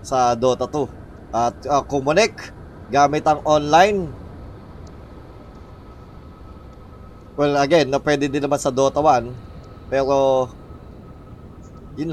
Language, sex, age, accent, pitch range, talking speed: Filipino, male, 20-39, native, 100-150 Hz, 95 wpm